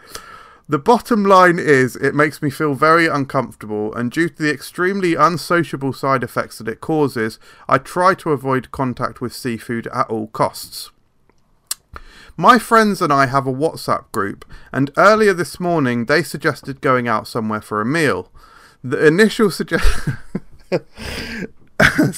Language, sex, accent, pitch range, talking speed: English, male, British, 130-190 Hz, 145 wpm